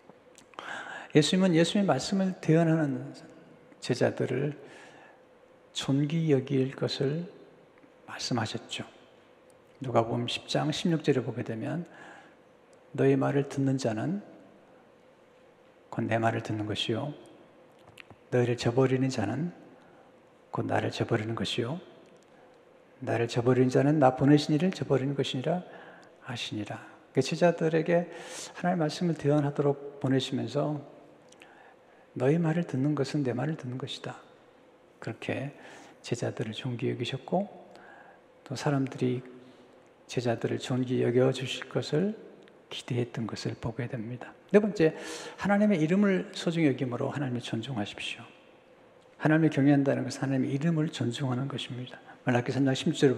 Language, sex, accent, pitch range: Korean, male, native, 125-155 Hz